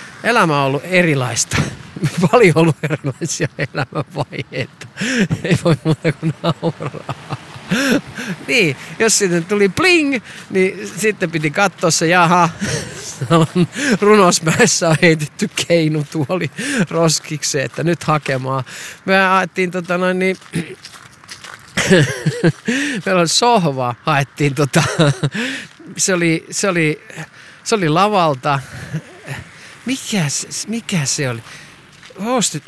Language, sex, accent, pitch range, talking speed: Finnish, male, native, 135-185 Hz, 95 wpm